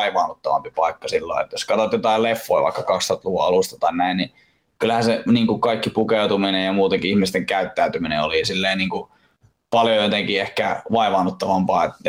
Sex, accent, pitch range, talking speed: male, native, 105-125 Hz, 165 wpm